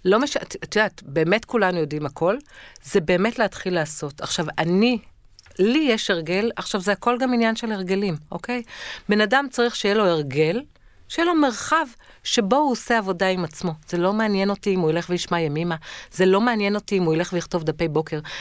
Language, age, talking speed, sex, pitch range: Hebrew, 50-69, 195 wpm, female, 165-230 Hz